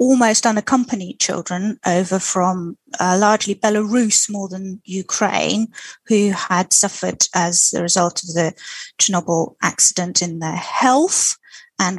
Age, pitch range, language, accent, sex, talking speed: 30-49, 195-235 Hz, English, British, female, 125 wpm